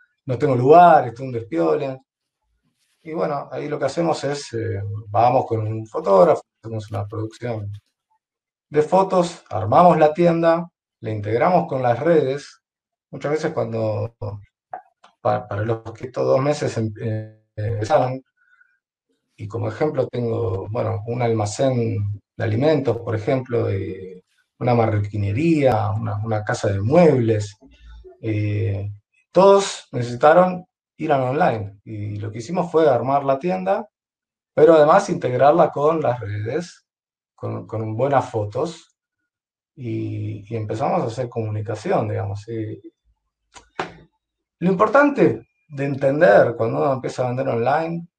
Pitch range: 110-155 Hz